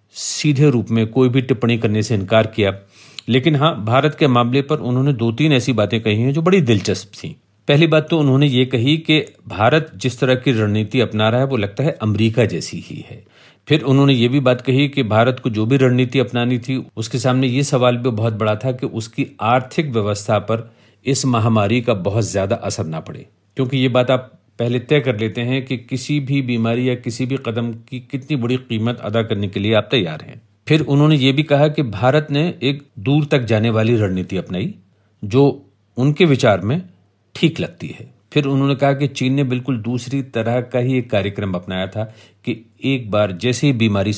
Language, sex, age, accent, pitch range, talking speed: Hindi, male, 50-69, native, 110-140 Hz, 210 wpm